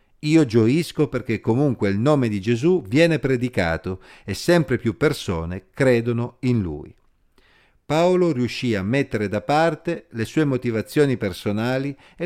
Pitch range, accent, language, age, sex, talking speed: 105-155 Hz, native, Italian, 50-69, male, 135 wpm